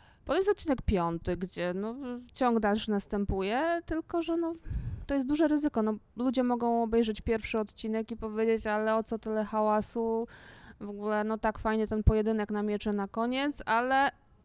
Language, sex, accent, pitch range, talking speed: Polish, female, native, 185-235 Hz, 170 wpm